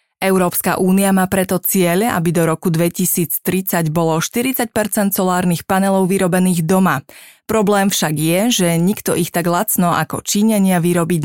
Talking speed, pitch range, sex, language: 140 wpm, 175-200 Hz, female, Slovak